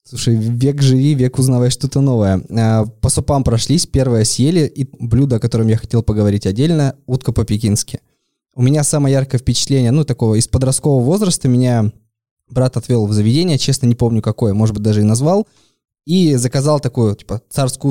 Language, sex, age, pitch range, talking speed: Russian, male, 20-39, 115-145 Hz, 170 wpm